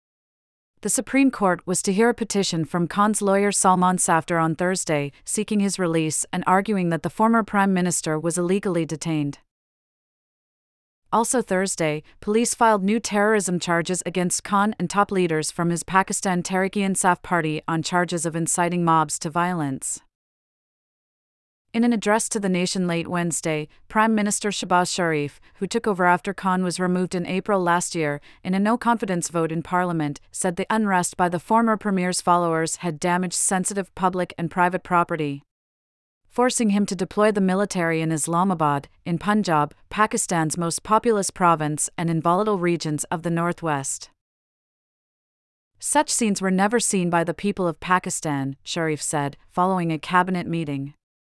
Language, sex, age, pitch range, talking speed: English, female, 30-49, 165-200 Hz, 155 wpm